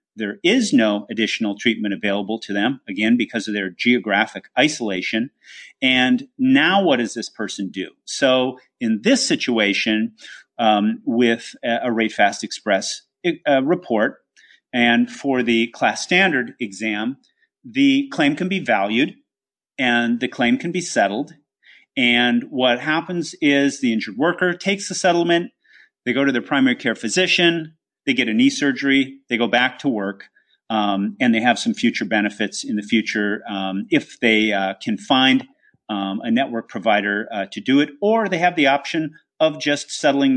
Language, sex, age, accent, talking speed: English, male, 40-59, American, 165 wpm